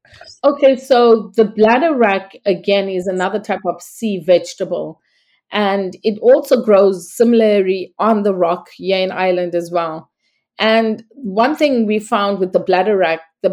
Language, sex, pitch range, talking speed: English, female, 185-220 Hz, 155 wpm